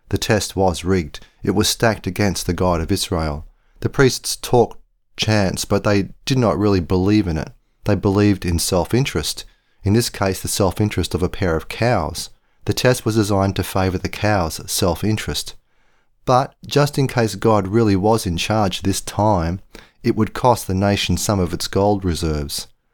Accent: Australian